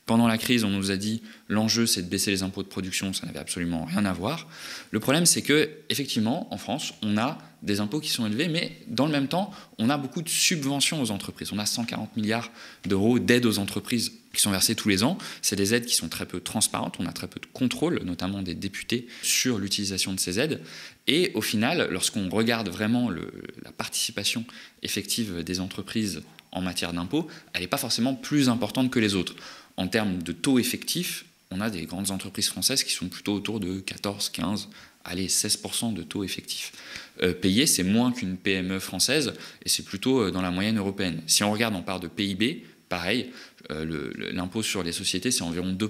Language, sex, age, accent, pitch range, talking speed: French, male, 20-39, French, 95-120 Hz, 210 wpm